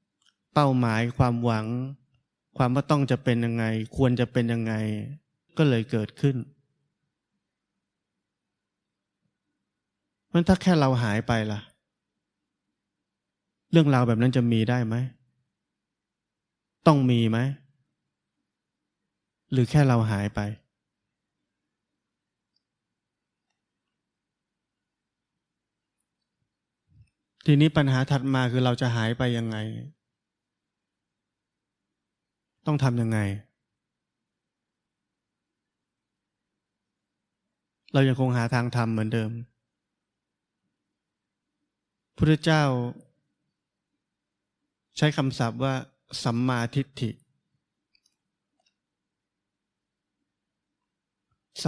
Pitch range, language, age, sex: 115-140 Hz, Thai, 20-39, male